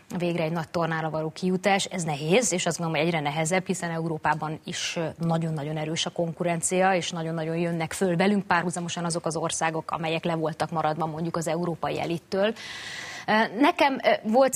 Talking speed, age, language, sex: 165 wpm, 20-39, Hungarian, female